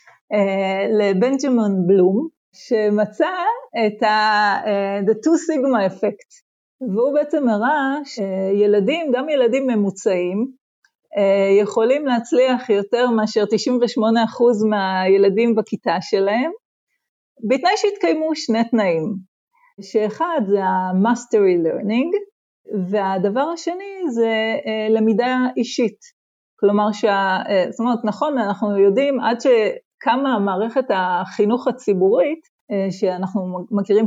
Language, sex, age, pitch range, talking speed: Hebrew, female, 40-59, 200-270 Hz, 90 wpm